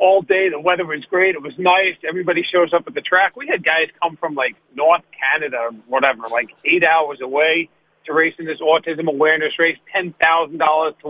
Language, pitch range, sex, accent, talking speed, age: English, 140-165 Hz, male, American, 205 wpm, 40-59